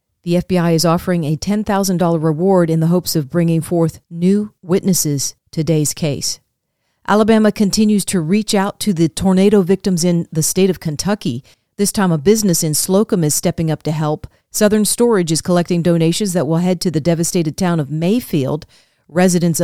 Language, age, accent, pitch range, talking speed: English, 40-59, American, 160-195 Hz, 175 wpm